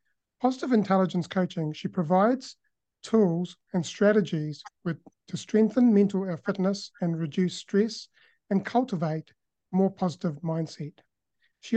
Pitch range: 165-200 Hz